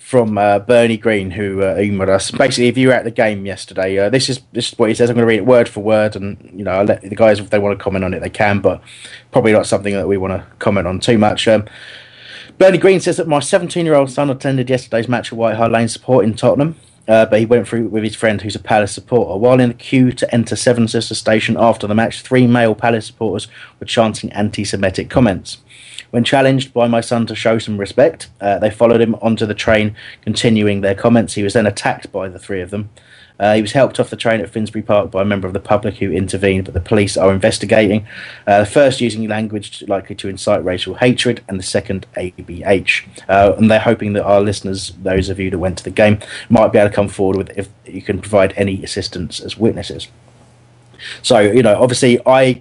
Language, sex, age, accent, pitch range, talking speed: English, male, 30-49, British, 100-120 Hz, 240 wpm